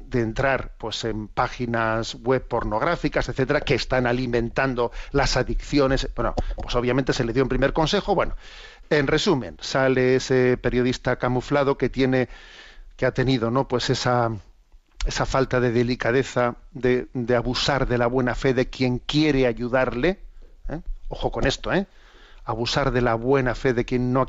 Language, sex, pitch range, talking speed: Spanish, male, 125-145 Hz, 165 wpm